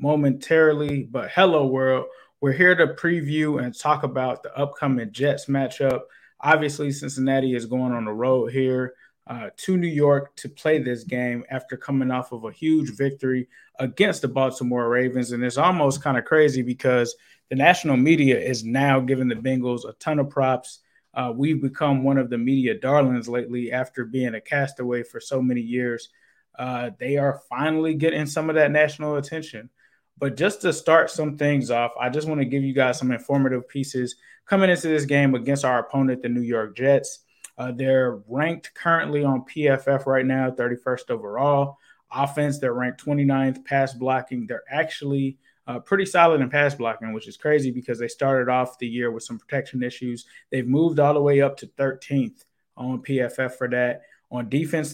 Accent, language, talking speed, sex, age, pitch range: American, English, 180 wpm, male, 20-39, 125-145 Hz